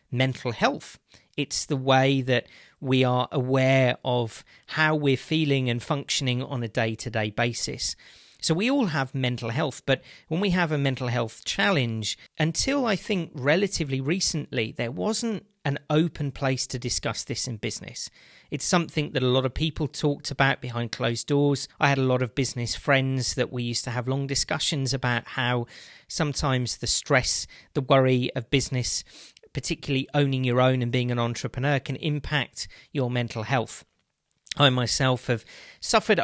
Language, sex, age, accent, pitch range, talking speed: English, male, 40-59, British, 125-150 Hz, 165 wpm